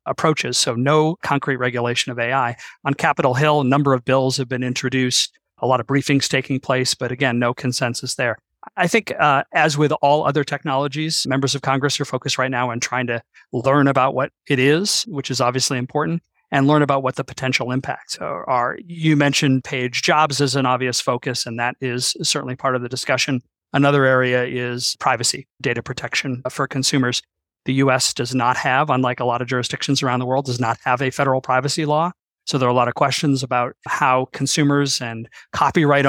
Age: 40-59